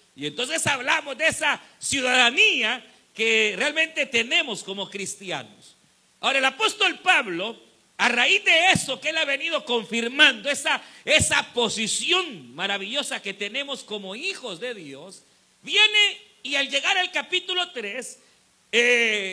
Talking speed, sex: 130 wpm, male